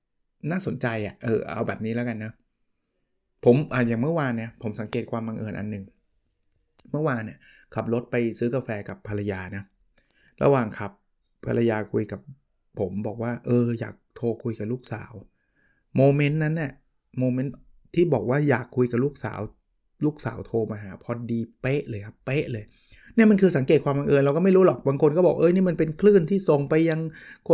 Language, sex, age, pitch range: Thai, male, 20-39, 110-145 Hz